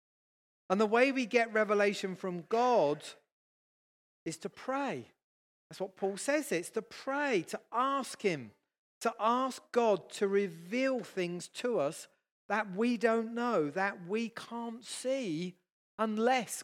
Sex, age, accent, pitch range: male, 40-59, British, 180-255 Hz